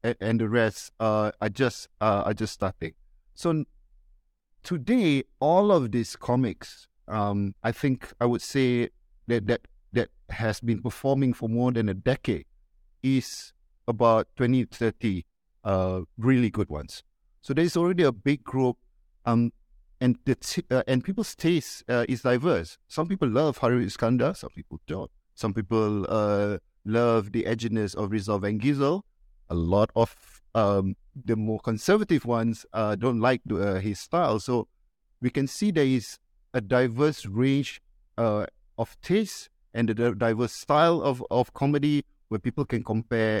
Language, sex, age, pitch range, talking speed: English, male, 50-69, 105-130 Hz, 155 wpm